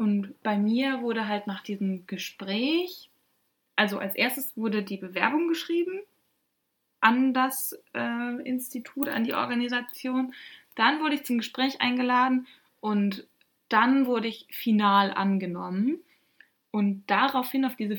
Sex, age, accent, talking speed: female, 20-39, German, 125 wpm